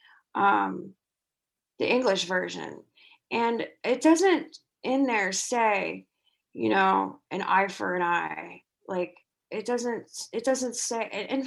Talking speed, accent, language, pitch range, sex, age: 125 wpm, American, English, 180-240 Hz, female, 20-39